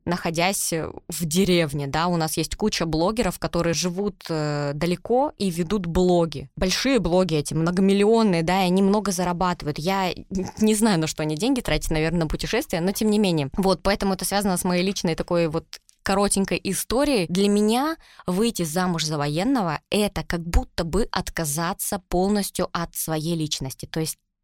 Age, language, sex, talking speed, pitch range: 20-39, Russian, female, 165 wpm, 160-195 Hz